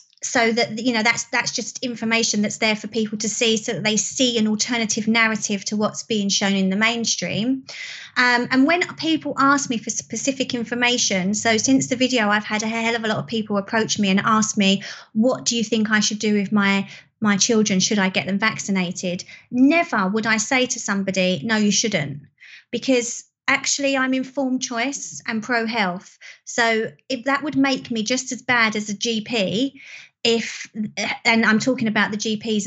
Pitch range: 210-250 Hz